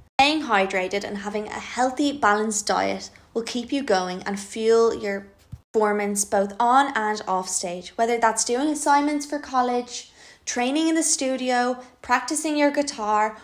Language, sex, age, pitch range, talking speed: English, female, 20-39, 210-270 Hz, 150 wpm